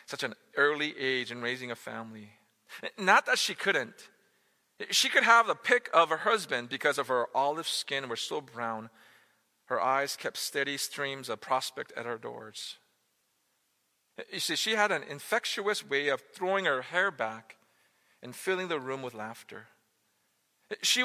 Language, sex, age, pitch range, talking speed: English, male, 40-59, 115-150 Hz, 165 wpm